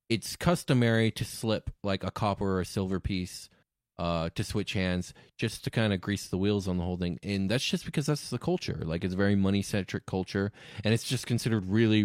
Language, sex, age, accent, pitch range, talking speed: English, male, 20-39, American, 90-115 Hz, 225 wpm